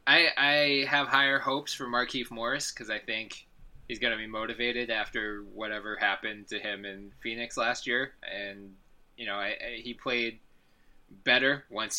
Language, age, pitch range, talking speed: English, 20-39, 100-120 Hz, 170 wpm